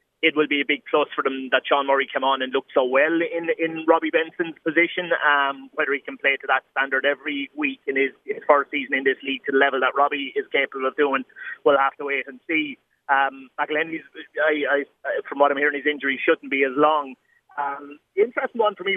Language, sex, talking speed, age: English, male, 235 wpm, 30-49